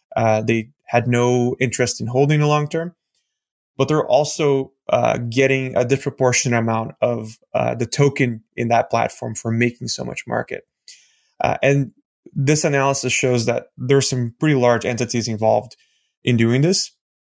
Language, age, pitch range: English, 20-39, 115-135 Hz